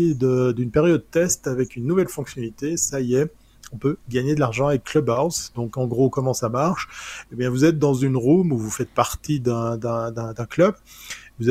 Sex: male